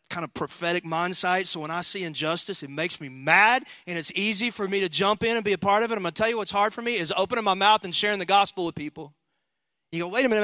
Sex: male